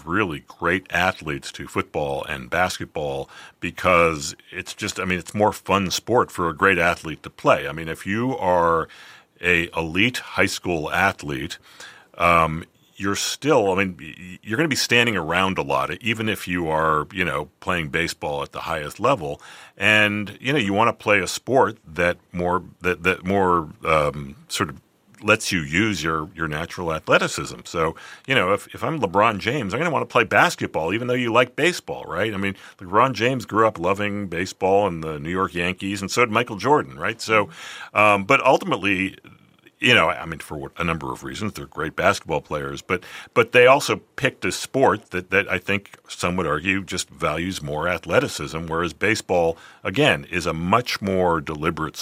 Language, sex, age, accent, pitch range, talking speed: English, male, 40-59, American, 80-100 Hz, 190 wpm